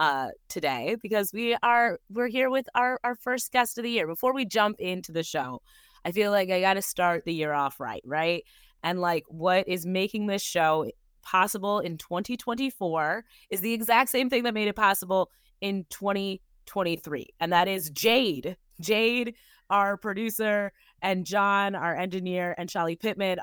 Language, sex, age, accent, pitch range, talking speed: English, female, 20-39, American, 170-220 Hz, 175 wpm